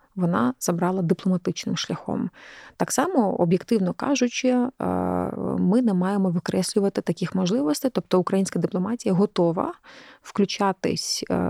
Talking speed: 100 wpm